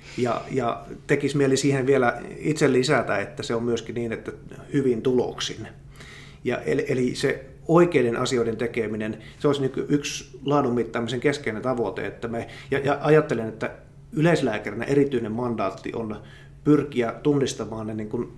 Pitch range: 115-140 Hz